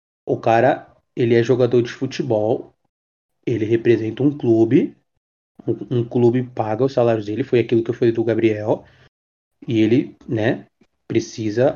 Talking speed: 150 wpm